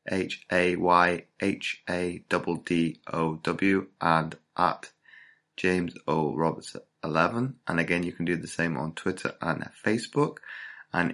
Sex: male